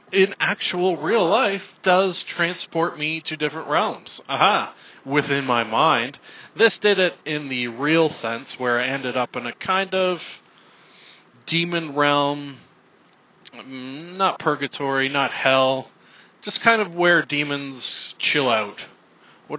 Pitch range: 125-170 Hz